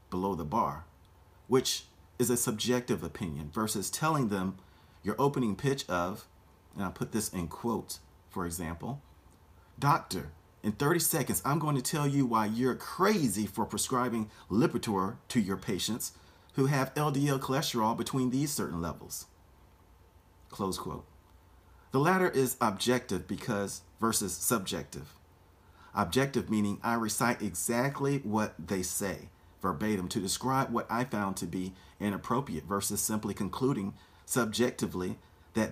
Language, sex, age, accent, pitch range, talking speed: English, male, 40-59, American, 90-120 Hz, 135 wpm